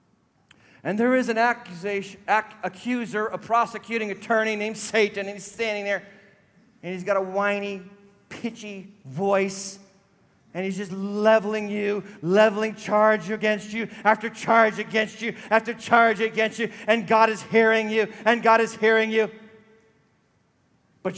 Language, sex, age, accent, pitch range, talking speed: English, male, 40-59, American, 210-250 Hz, 145 wpm